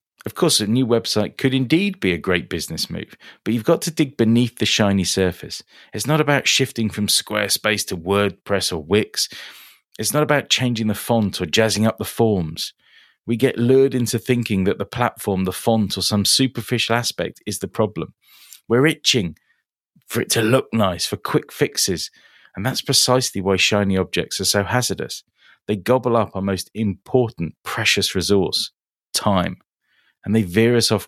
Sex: male